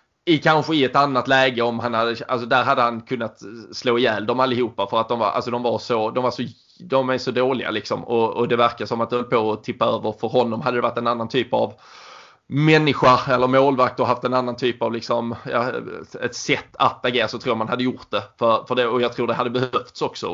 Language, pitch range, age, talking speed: Swedish, 115-135 Hz, 20-39, 255 wpm